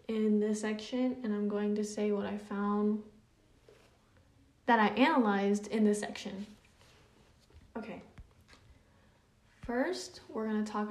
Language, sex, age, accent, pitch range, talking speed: English, female, 10-29, American, 205-245 Hz, 125 wpm